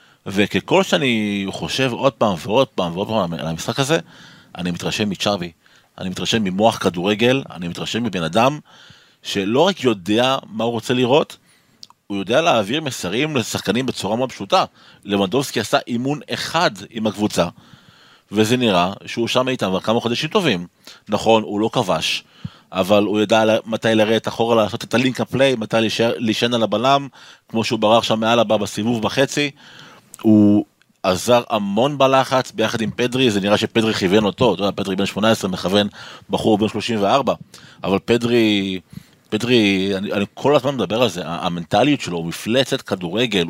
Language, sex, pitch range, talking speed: Hebrew, male, 100-125 Hz, 155 wpm